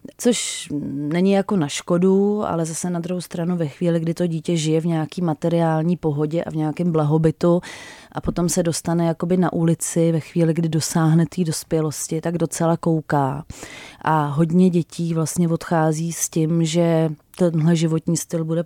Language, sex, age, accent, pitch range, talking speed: Czech, female, 30-49, native, 155-175 Hz, 165 wpm